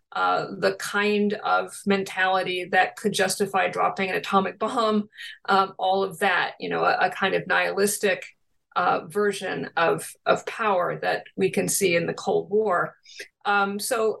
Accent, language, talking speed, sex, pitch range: American, English, 160 wpm, female, 195-245 Hz